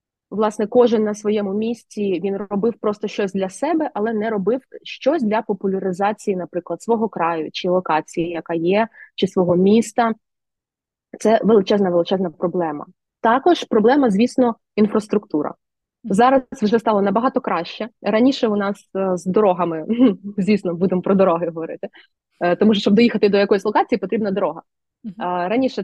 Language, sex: Ukrainian, female